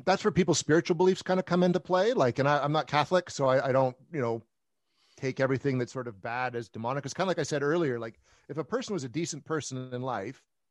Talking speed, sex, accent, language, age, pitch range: 260 wpm, male, American, English, 40-59, 120-150 Hz